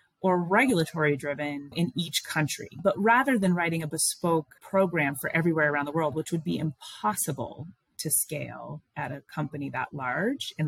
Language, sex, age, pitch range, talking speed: English, female, 30-49, 140-175 Hz, 170 wpm